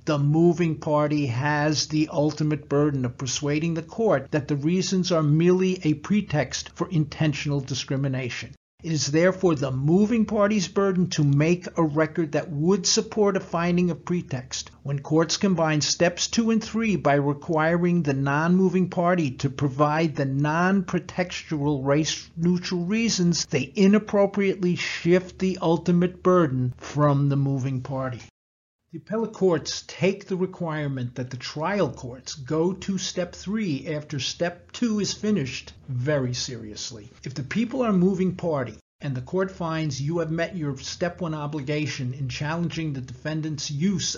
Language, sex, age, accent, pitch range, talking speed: English, male, 50-69, American, 145-185 Hz, 150 wpm